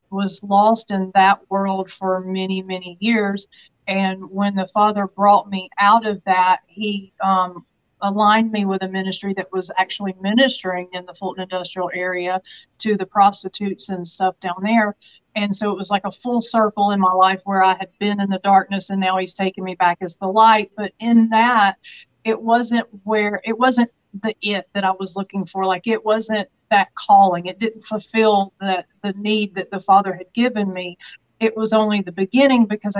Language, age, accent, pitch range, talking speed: English, 40-59, American, 190-225 Hz, 195 wpm